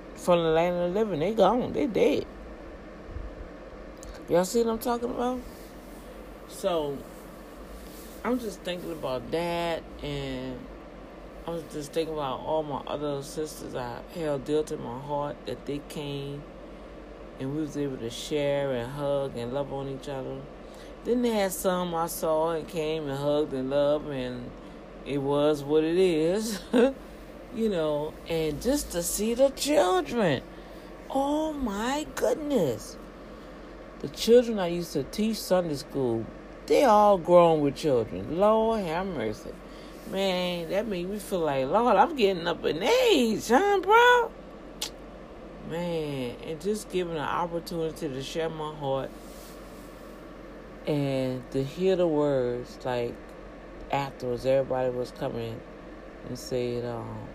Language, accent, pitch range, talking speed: English, American, 140-200 Hz, 140 wpm